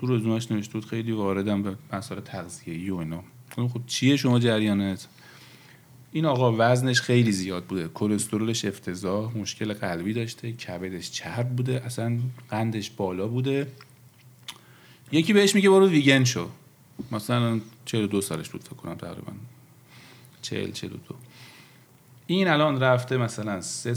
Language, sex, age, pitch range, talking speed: Persian, male, 40-59, 100-125 Hz, 135 wpm